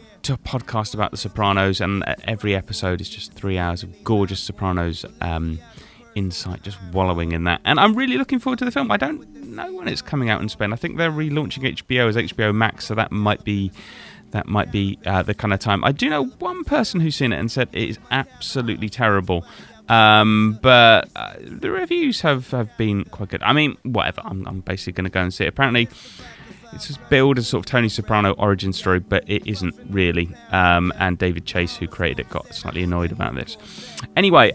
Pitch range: 95-125 Hz